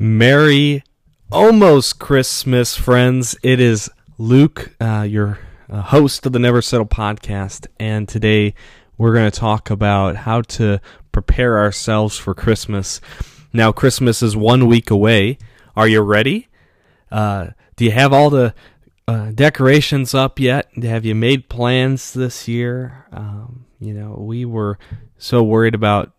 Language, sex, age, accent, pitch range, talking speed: English, male, 20-39, American, 105-120 Hz, 140 wpm